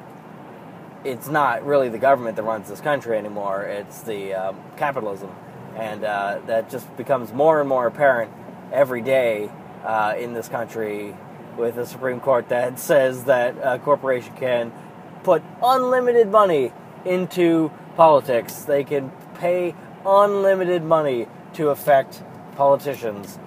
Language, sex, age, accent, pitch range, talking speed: English, male, 20-39, American, 130-180 Hz, 135 wpm